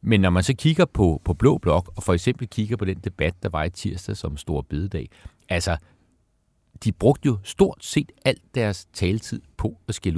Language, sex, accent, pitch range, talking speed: Danish, male, native, 90-115 Hz, 205 wpm